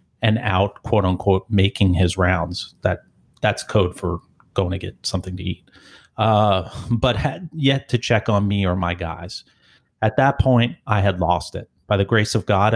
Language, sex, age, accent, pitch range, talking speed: English, male, 30-49, American, 95-110 Hz, 190 wpm